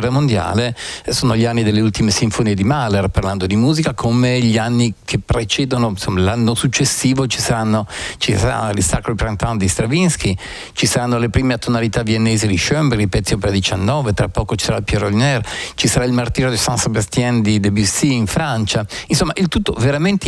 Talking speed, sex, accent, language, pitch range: 175 wpm, male, native, Italian, 100-135 Hz